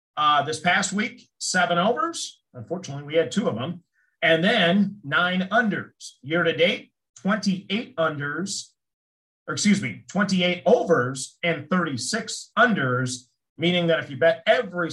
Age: 40-59